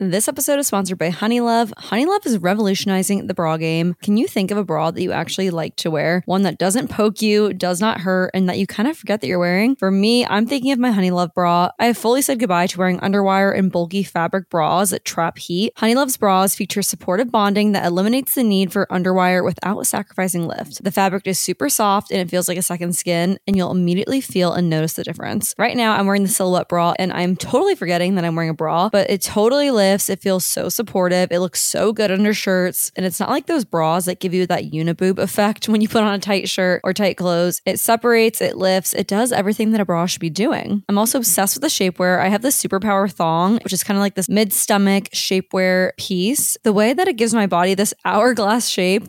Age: 20-39